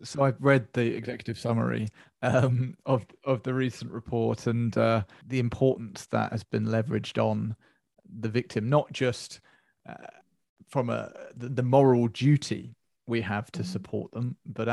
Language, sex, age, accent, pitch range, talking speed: English, male, 30-49, British, 115-130 Hz, 155 wpm